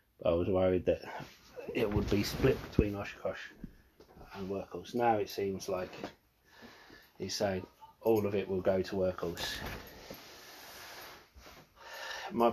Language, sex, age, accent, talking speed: English, male, 30-49, British, 125 wpm